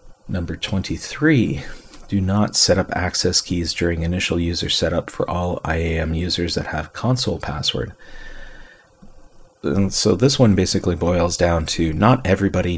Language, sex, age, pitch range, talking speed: English, male, 40-59, 85-100 Hz, 135 wpm